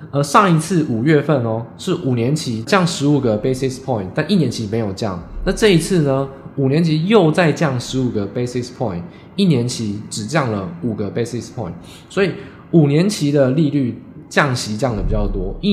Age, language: 20-39, Chinese